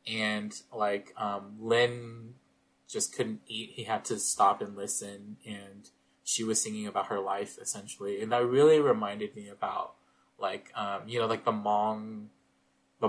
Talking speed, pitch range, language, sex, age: 160 wpm, 100-110 Hz, English, male, 20-39